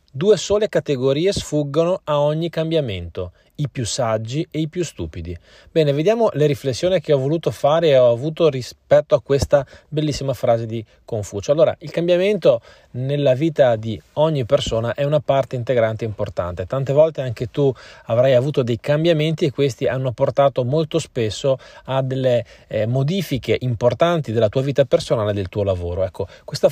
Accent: native